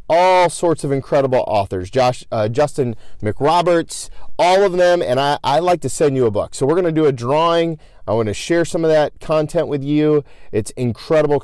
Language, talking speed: English, 200 wpm